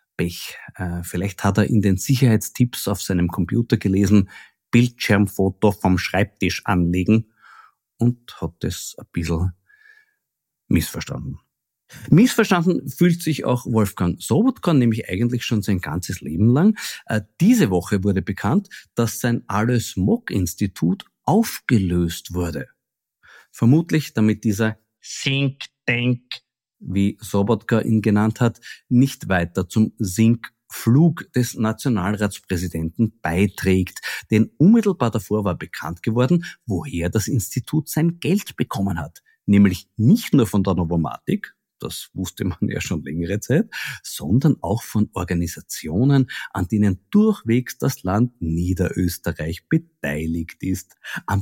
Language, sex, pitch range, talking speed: German, male, 95-130 Hz, 115 wpm